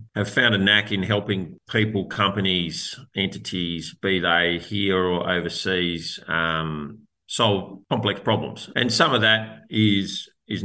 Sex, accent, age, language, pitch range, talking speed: male, Australian, 40-59, English, 90-105 Hz, 135 wpm